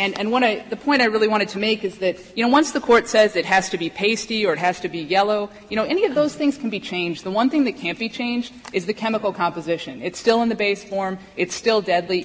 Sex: female